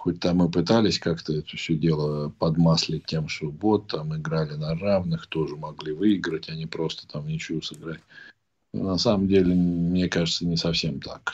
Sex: male